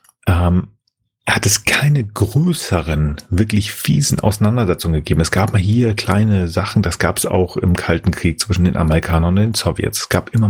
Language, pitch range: German, 95-115 Hz